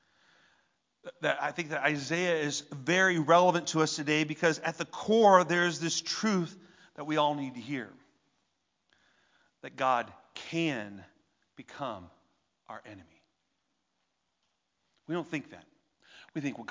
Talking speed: 135 wpm